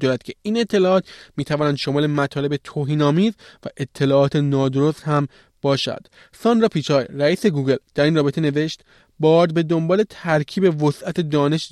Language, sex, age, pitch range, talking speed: Persian, male, 20-39, 130-160 Hz, 155 wpm